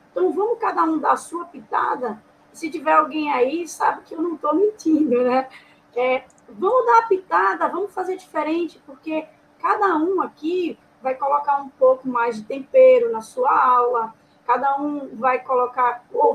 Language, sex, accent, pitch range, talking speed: Portuguese, female, Brazilian, 240-325 Hz, 165 wpm